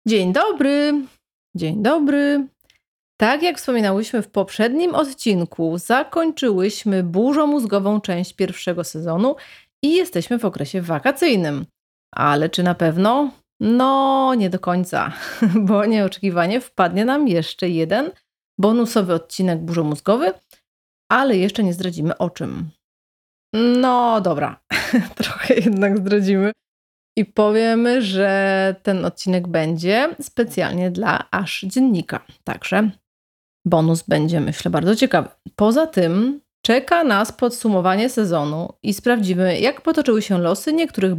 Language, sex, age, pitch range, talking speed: Polish, female, 30-49, 180-245 Hz, 110 wpm